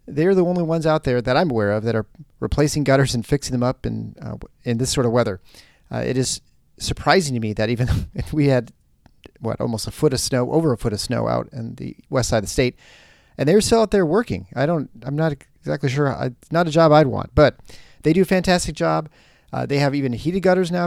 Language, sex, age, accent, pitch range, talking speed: English, male, 40-59, American, 115-150 Hz, 255 wpm